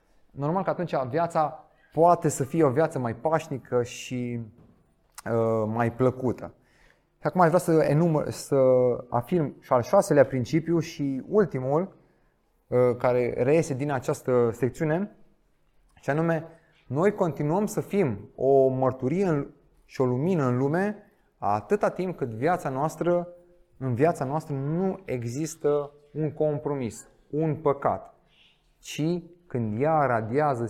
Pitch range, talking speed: 125-160 Hz, 125 wpm